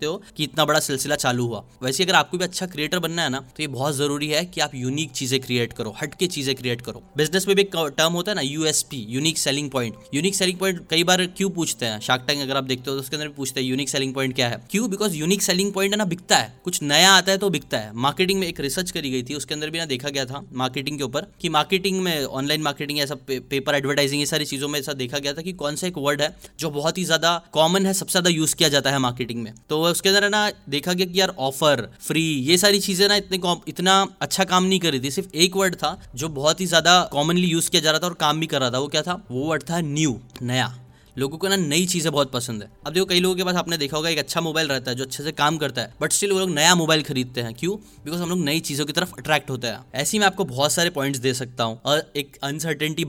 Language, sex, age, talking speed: Hindi, male, 10-29, 170 wpm